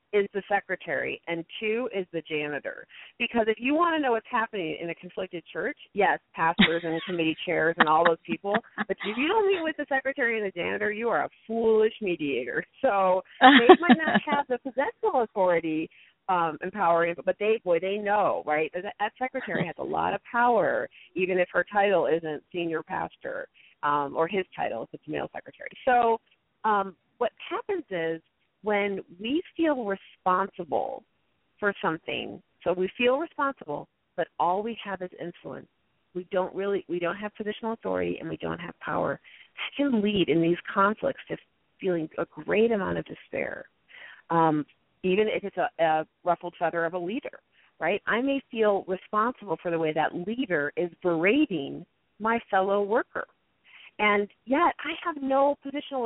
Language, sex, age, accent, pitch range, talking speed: English, female, 40-59, American, 170-240 Hz, 175 wpm